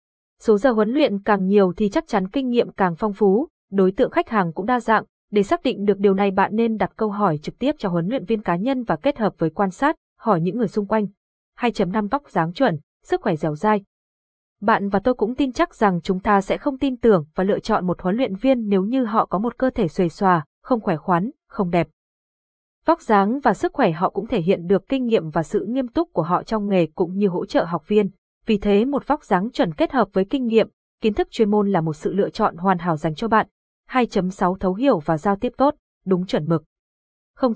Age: 20-39